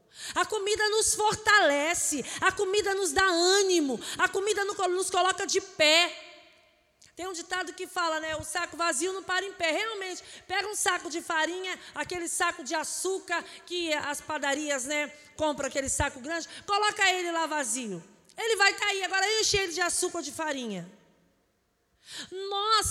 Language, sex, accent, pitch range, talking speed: Portuguese, female, Brazilian, 335-415 Hz, 160 wpm